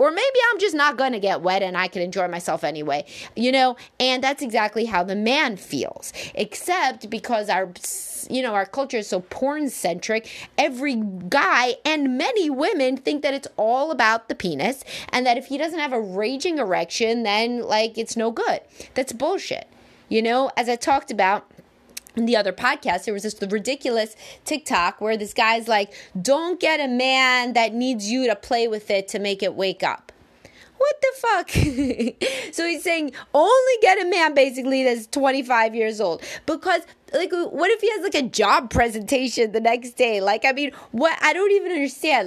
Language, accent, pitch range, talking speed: English, American, 220-295 Hz, 190 wpm